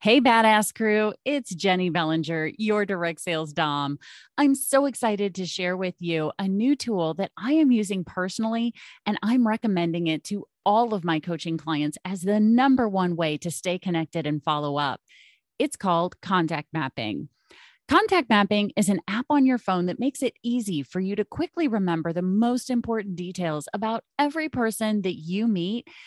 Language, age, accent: English, 30-49, American